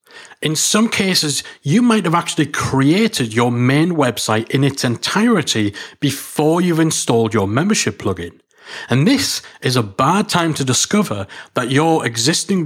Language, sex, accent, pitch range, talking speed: English, male, British, 120-165 Hz, 145 wpm